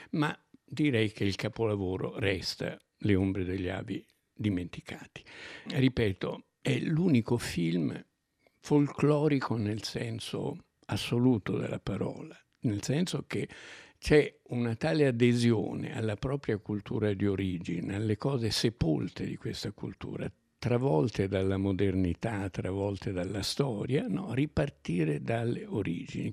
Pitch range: 100-120 Hz